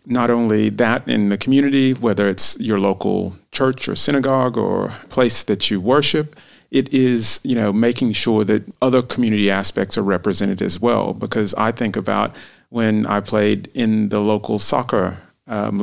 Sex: male